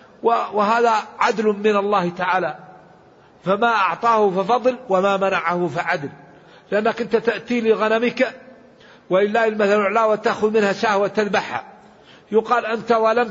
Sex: male